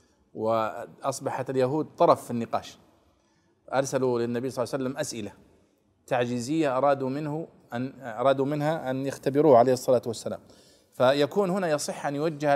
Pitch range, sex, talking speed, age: 135-180 Hz, male, 130 wpm, 40-59